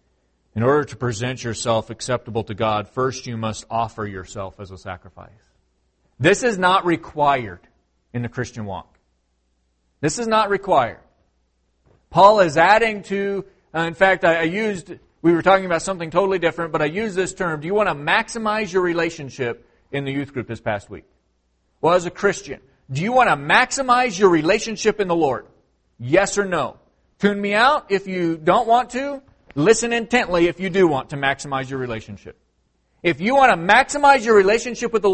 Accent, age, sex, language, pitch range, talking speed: American, 40-59, male, English, 130-215 Hz, 185 wpm